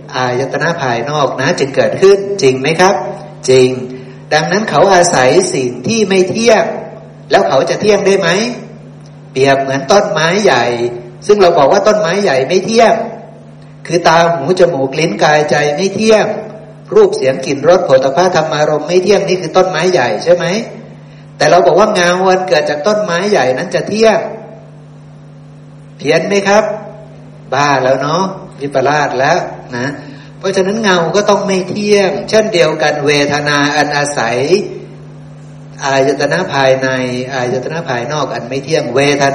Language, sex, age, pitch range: Thai, male, 60-79, 135-185 Hz